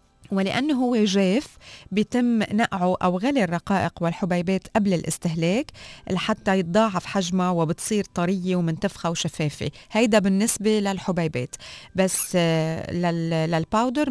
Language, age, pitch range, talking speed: Arabic, 20-39, 165-205 Hz, 100 wpm